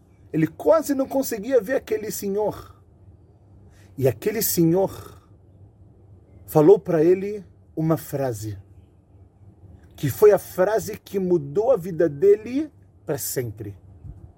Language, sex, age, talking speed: Portuguese, male, 40-59, 110 wpm